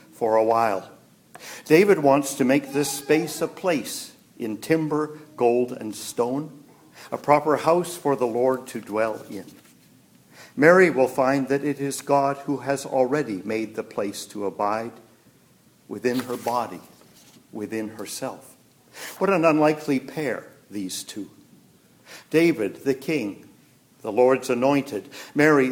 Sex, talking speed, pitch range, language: male, 135 wpm, 120-150 Hz, English